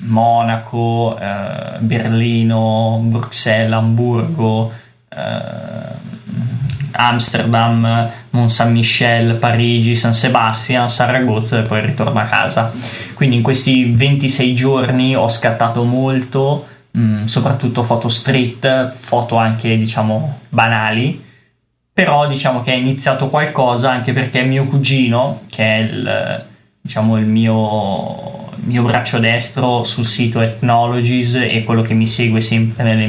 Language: Italian